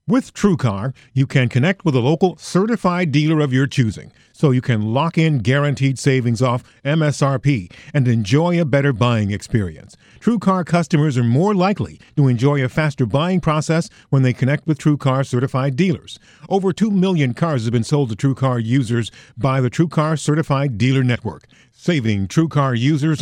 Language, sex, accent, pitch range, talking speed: English, male, American, 120-165 Hz, 170 wpm